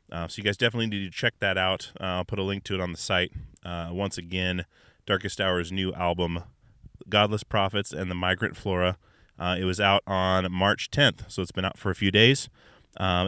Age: 30-49